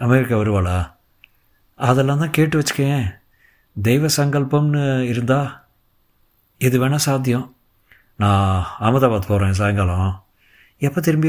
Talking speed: 95 wpm